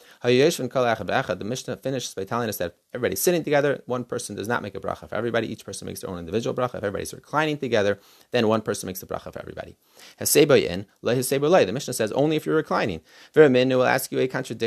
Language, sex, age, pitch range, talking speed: English, male, 30-49, 115-145 Hz, 190 wpm